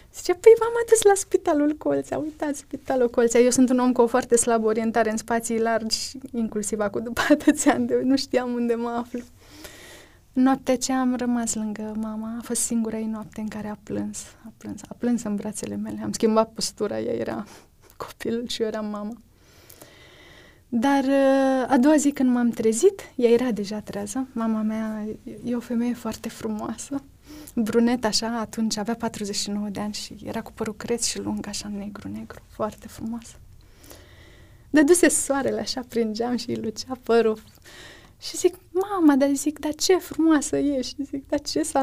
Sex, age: female, 20-39